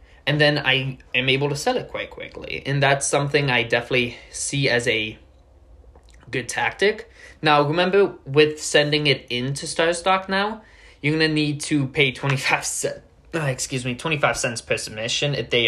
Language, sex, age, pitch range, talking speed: English, male, 20-39, 105-140 Hz, 165 wpm